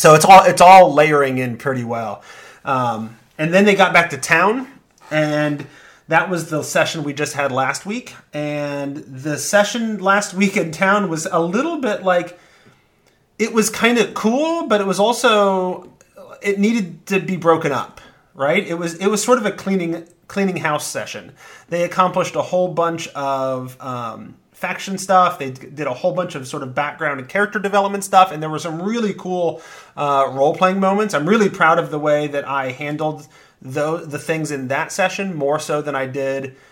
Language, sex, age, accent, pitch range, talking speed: English, male, 30-49, American, 135-180 Hz, 190 wpm